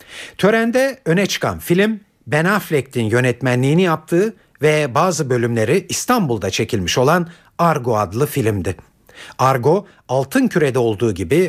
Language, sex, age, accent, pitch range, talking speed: Turkish, male, 60-79, native, 115-180 Hz, 115 wpm